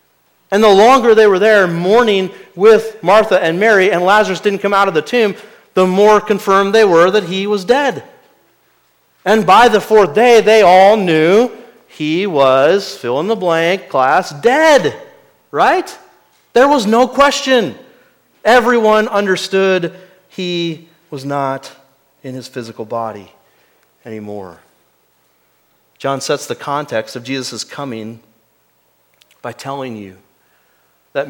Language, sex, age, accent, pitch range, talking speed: English, male, 40-59, American, 135-205 Hz, 135 wpm